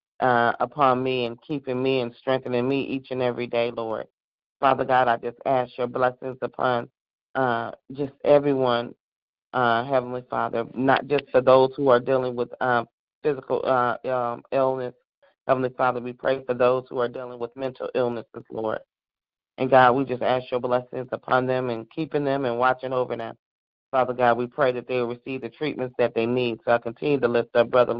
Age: 40-59